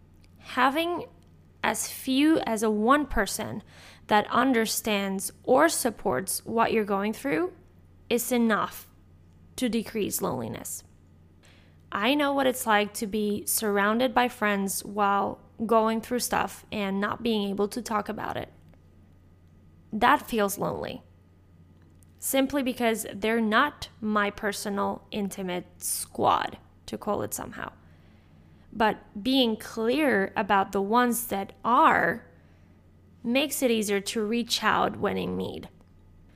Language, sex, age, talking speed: English, female, 20-39, 120 wpm